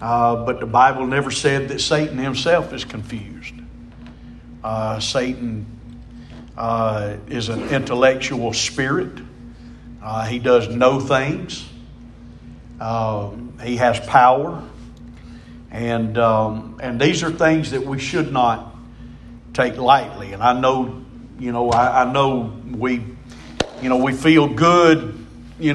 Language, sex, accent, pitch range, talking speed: English, male, American, 115-135 Hz, 125 wpm